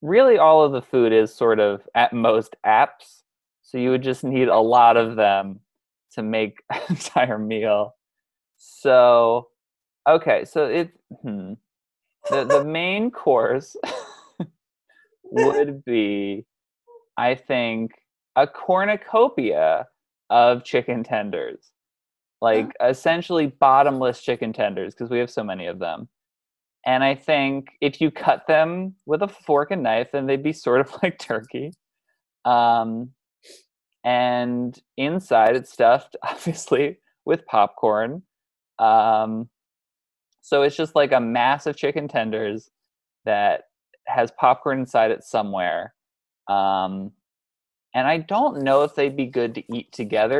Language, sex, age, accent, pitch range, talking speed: English, male, 20-39, American, 110-160 Hz, 130 wpm